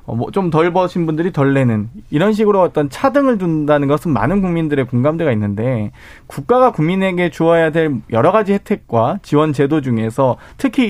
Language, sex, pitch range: Korean, male, 130-190 Hz